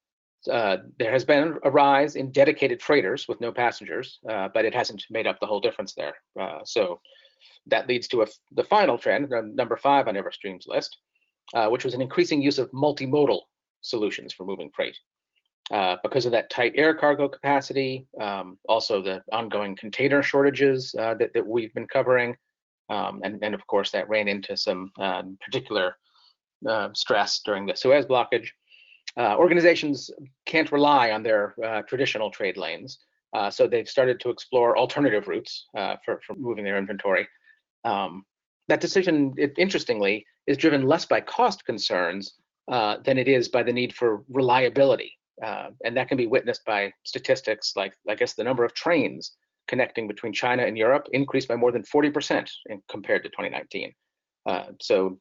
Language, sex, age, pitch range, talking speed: English, male, 40-59, 120-170 Hz, 170 wpm